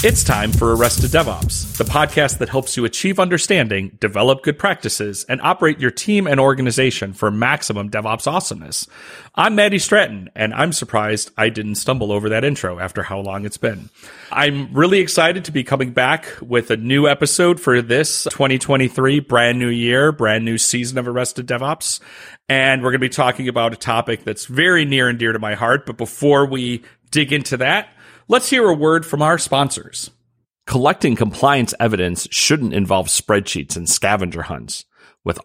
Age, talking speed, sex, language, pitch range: 40-59, 180 wpm, male, English, 110-155 Hz